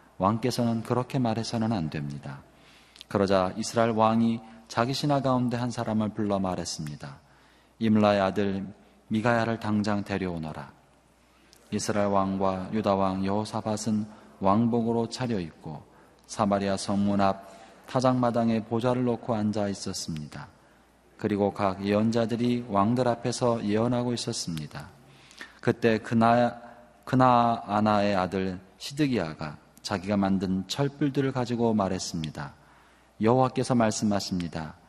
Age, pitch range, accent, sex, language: 30-49, 95-115 Hz, native, male, Korean